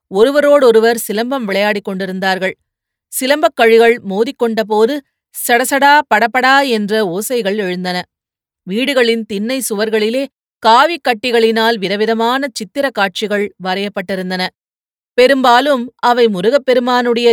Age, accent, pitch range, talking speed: 30-49, native, 205-255 Hz, 85 wpm